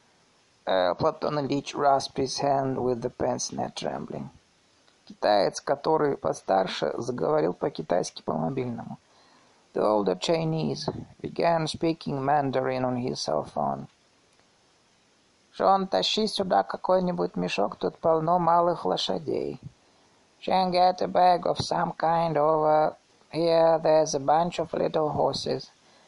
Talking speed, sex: 115 wpm, male